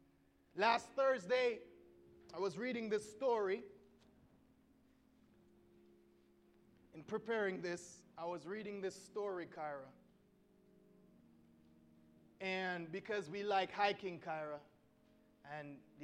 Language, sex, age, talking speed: English, male, 20-39, 85 wpm